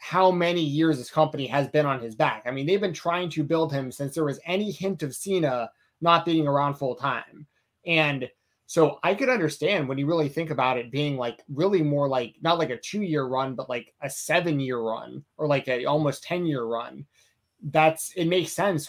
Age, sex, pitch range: 20-39, male, 130-170 Hz